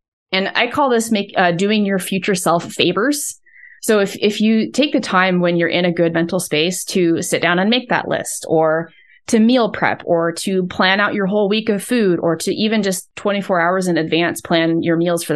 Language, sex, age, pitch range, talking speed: English, female, 20-39, 170-210 Hz, 225 wpm